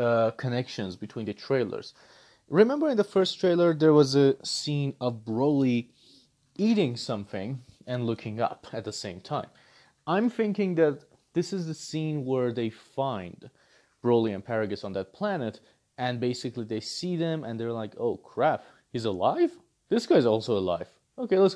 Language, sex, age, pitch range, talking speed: English, male, 30-49, 115-155 Hz, 165 wpm